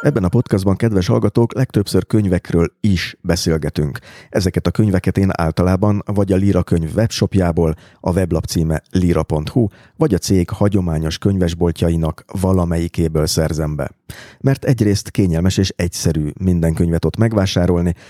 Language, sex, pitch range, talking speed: Hungarian, male, 80-100 Hz, 130 wpm